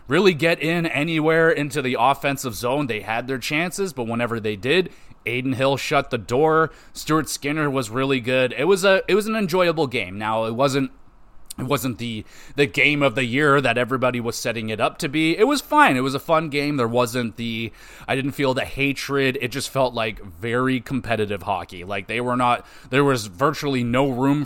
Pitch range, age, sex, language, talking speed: 120-150 Hz, 30-49, male, English, 210 wpm